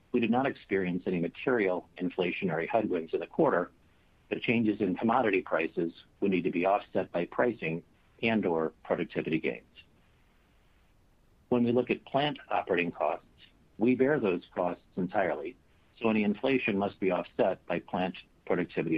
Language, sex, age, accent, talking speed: English, male, 50-69, American, 150 wpm